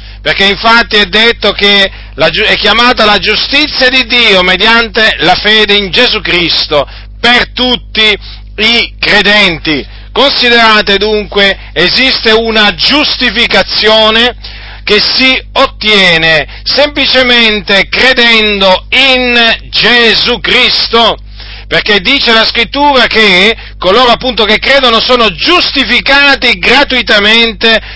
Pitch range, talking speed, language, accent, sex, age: 195-245 Hz, 100 wpm, Italian, native, male, 40-59